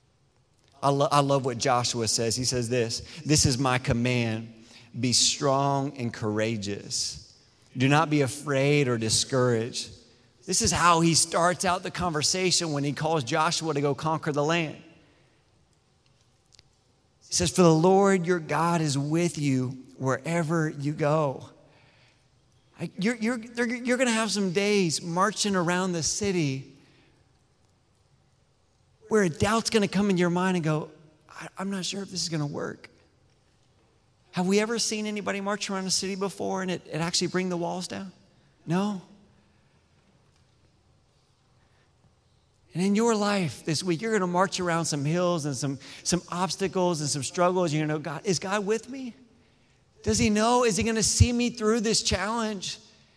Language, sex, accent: English, male, American